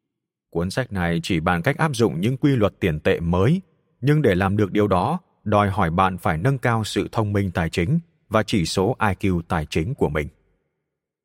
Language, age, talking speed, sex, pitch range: Vietnamese, 30-49, 210 wpm, male, 90-135 Hz